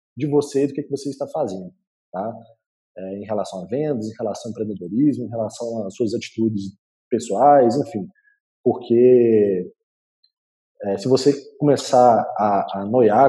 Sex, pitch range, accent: male, 115-150 Hz, Brazilian